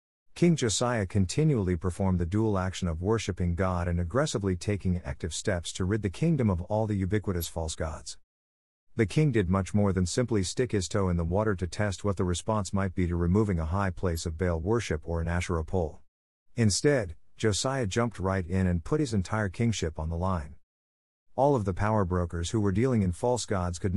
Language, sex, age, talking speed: English, male, 50-69, 205 wpm